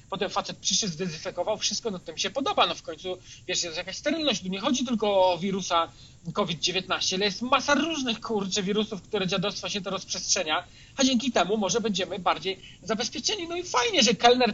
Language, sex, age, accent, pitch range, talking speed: Polish, male, 40-59, native, 185-230 Hz, 190 wpm